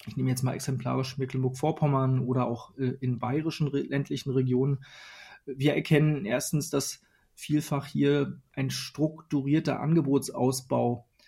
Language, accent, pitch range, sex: German, German, 130-145 Hz, male